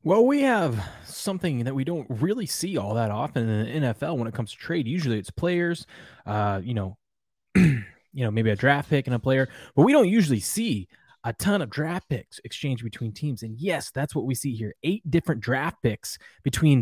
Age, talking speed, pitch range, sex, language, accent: 20-39, 215 wpm, 115-150 Hz, male, English, American